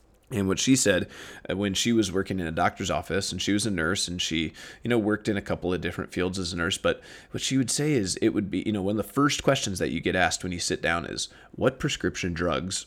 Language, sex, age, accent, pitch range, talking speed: English, male, 30-49, American, 95-115 Hz, 275 wpm